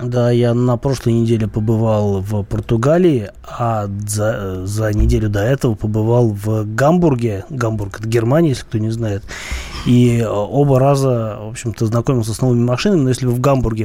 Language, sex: Russian, male